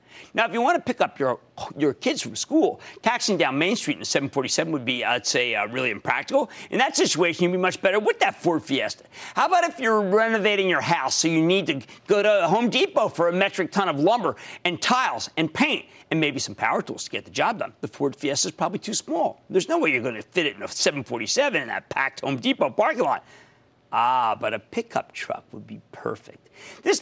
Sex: male